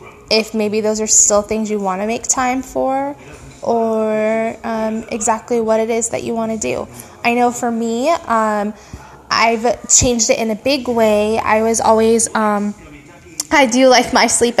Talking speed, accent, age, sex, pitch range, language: 180 wpm, American, 10-29, female, 215-255 Hz, English